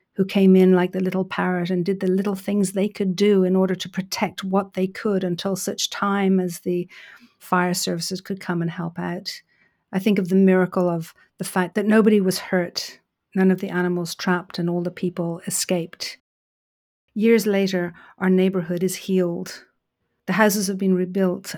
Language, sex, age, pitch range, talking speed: English, female, 50-69, 180-205 Hz, 185 wpm